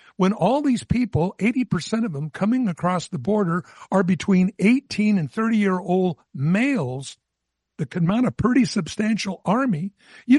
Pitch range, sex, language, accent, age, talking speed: 160-205 Hz, male, English, American, 60-79, 145 wpm